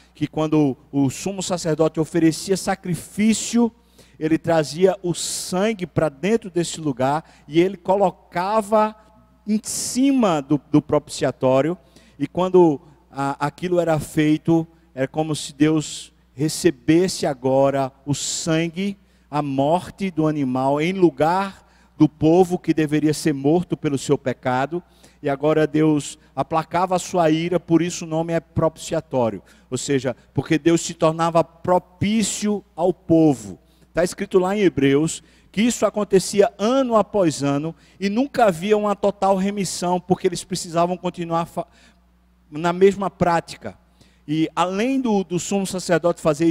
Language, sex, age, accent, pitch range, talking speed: Portuguese, male, 50-69, Brazilian, 155-185 Hz, 135 wpm